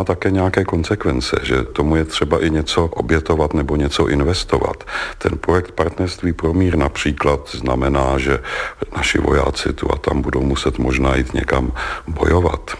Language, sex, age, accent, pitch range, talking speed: Czech, male, 50-69, native, 70-90 Hz, 150 wpm